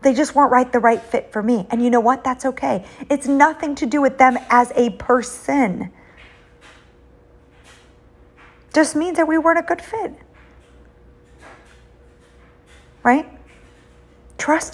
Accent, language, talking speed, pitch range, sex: American, English, 140 wpm, 175-245 Hz, female